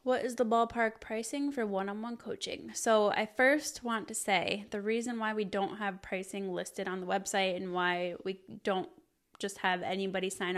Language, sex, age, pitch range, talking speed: English, female, 20-39, 195-225 Hz, 200 wpm